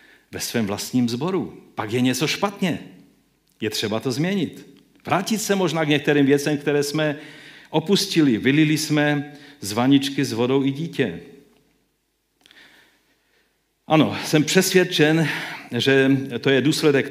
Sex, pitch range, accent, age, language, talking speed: male, 120-155 Hz, native, 50-69, Czech, 125 wpm